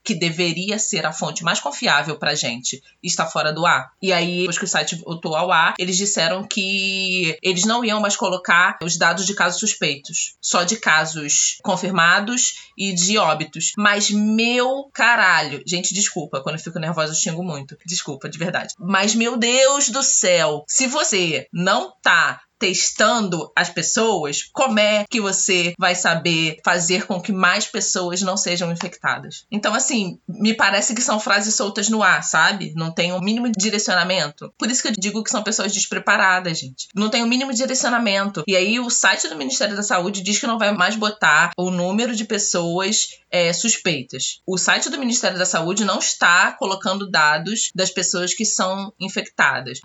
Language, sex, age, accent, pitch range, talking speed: Portuguese, female, 20-39, Brazilian, 175-215 Hz, 180 wpm